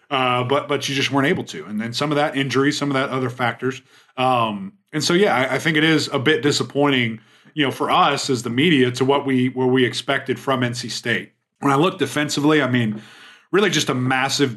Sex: male